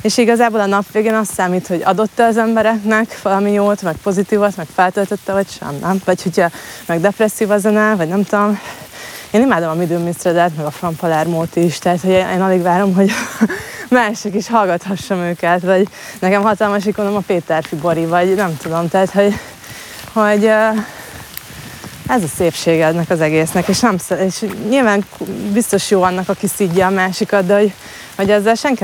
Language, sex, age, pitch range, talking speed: Hungarian, female, 20-39, 180-210 Hz, 175 wpm